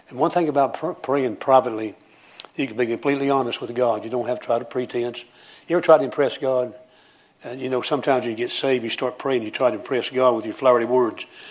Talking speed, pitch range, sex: 240 wpm, 125-140 Hz, male